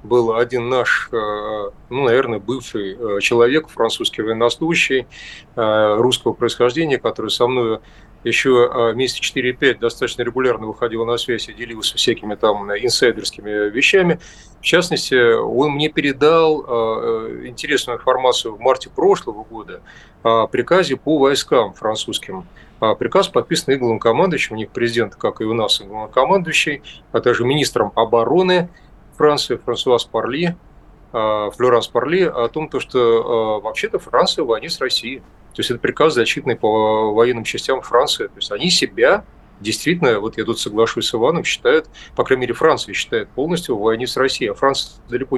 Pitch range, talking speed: 115-160 Hz, 140 wpm